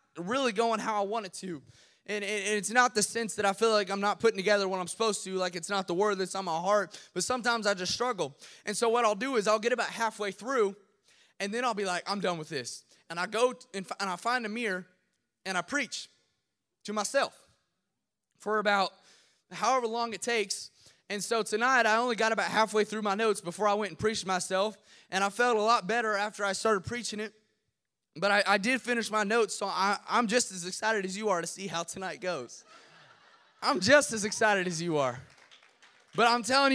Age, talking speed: 20-39, 225 wpm